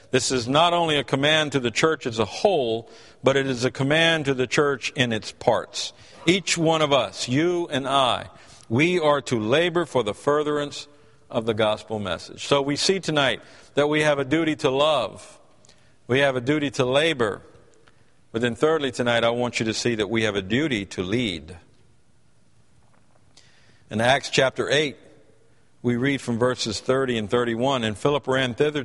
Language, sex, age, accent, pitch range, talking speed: English, male, 50-69, American, 115-145 Hz, 185 wpm